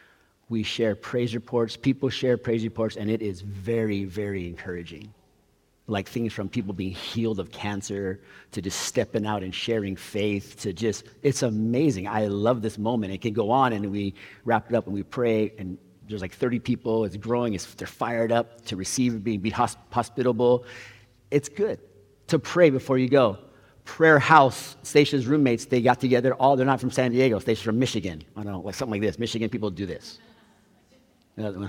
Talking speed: 190 wpm